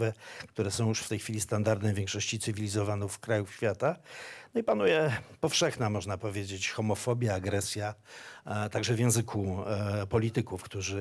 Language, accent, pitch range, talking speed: English, Polish, 105-125 Hz, 130 wpm